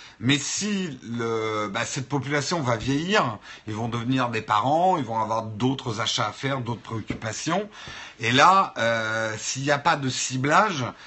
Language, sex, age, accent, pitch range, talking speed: French, male, 50-69, French, 115-150 Hz, 170 wpm